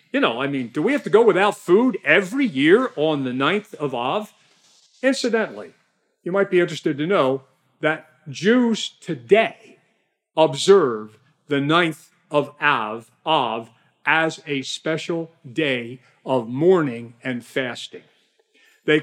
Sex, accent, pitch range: male, American, 145-205 Hz